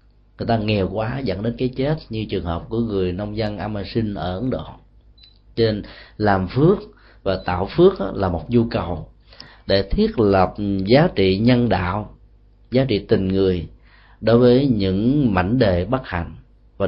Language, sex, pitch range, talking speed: Vietnamese, male, 100-125 Hz, 170 wpm